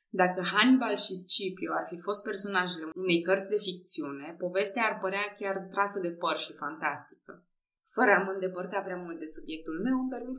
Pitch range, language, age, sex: 165-205 Hz, Romanian, 20-39, female